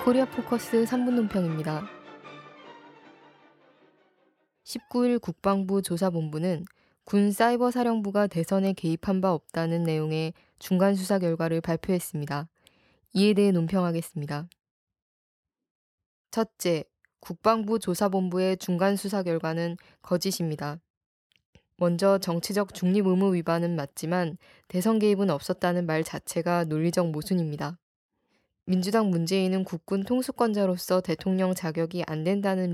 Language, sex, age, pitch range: Korean, female, 20-39, 170-200 Hz